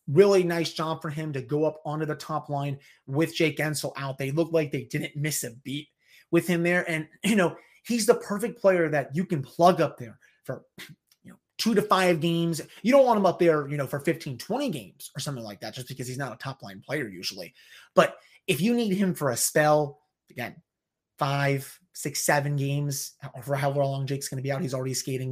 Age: 30-49